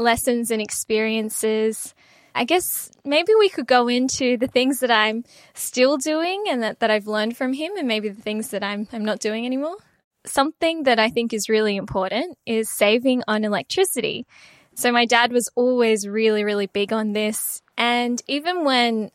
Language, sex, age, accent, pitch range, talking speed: English, female, 10-29, Australian, 215-250 Hz, 180 wpm